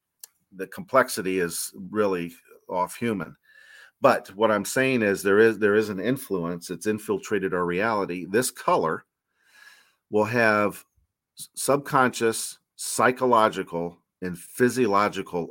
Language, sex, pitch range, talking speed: English, male, 95-115 Hz, 110 wpm